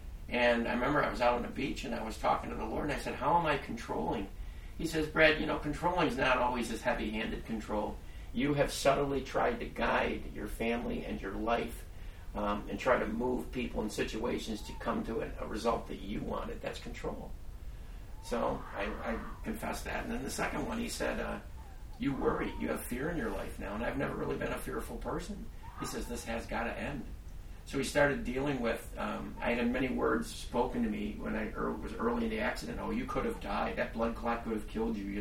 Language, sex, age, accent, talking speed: English, male, 50-69, American, 230 wpm